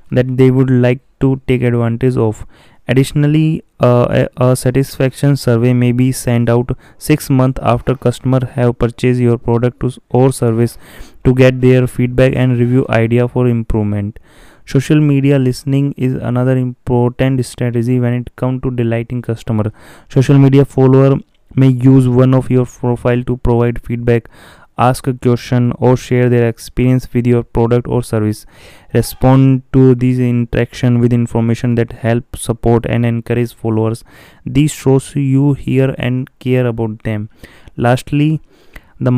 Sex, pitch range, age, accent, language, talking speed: male, 115-130 Hz, 20-39, Indian, English, 145 wpm